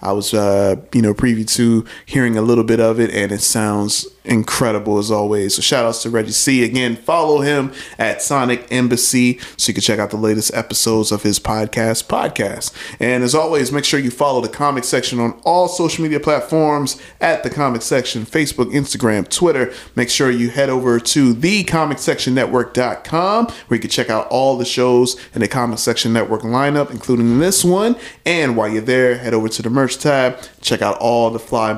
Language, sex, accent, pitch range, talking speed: English, male, American, 115-145 Hz, 195 wpm